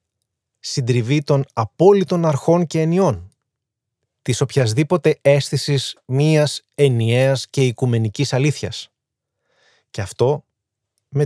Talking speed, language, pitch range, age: 90 wpm, Greek, 110-140 Hz, 30-49